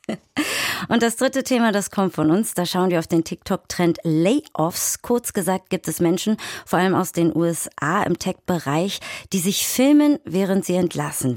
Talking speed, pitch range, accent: 175 wpm, 160-210 Hz, German